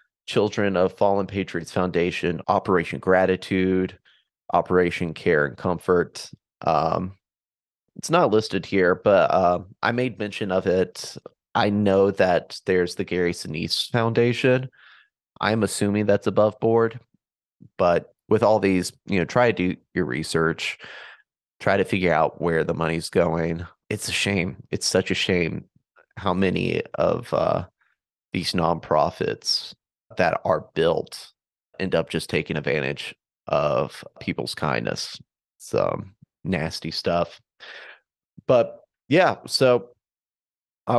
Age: 30-49